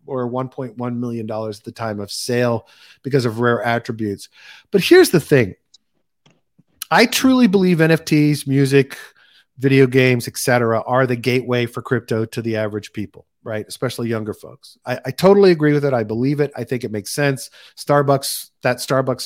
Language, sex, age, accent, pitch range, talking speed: English, male, 40-59, American, 120-160 Hz, 170 wpm